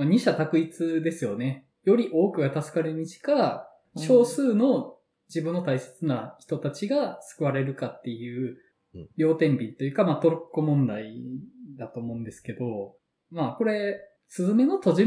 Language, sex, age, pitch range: Japanese, male, 20-39, 130-200 Hz